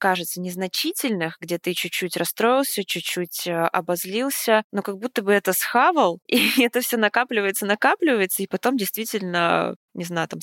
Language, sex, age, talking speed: Russian, female, 20-39, 145 wpm